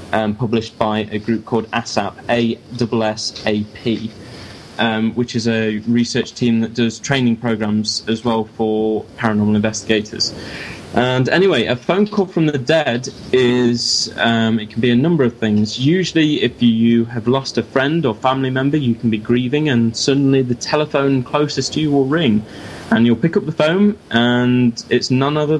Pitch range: 110-140 Hz